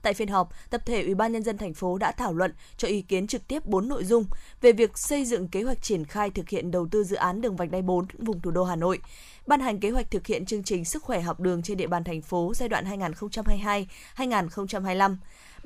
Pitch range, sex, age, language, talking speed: 185-230 Hz, female, 20-39, Vietnamese, 250 wpm